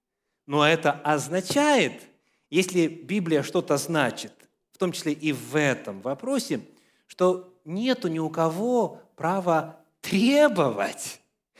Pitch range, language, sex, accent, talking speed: 135-185 Hz, Russian, male, native, 110 wpm